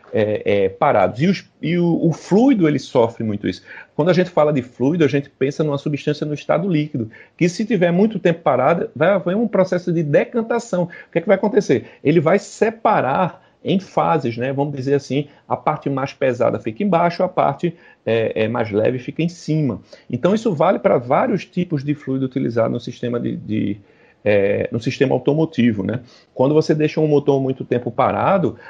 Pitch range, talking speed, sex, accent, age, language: 125-175 Hz, 200 wpm, male, Brazilian, 40-59, Portuguese